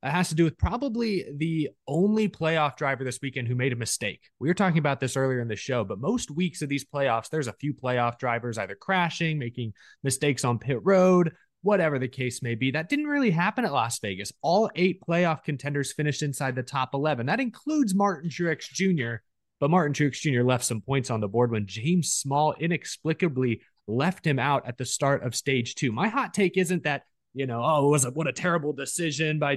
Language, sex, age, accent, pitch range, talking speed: English, male, 20-39, American, 125-175 Hz, 220 wpm